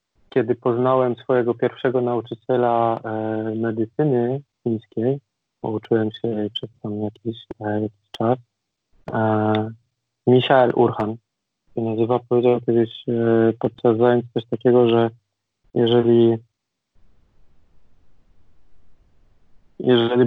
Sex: male